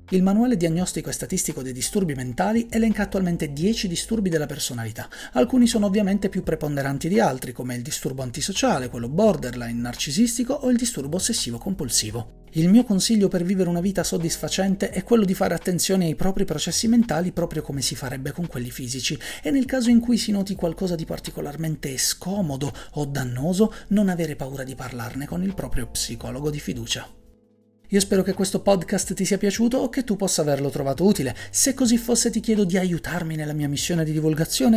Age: 40-59